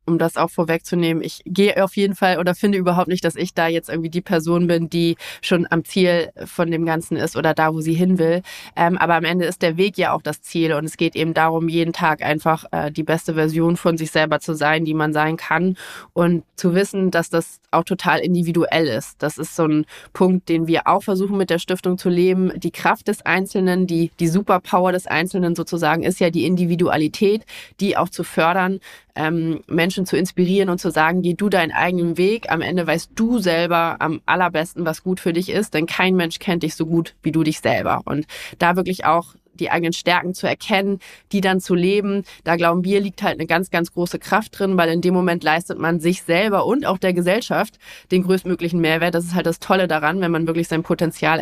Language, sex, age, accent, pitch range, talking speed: German, female, 20-39, German, 165-185 Hz, 220 wpm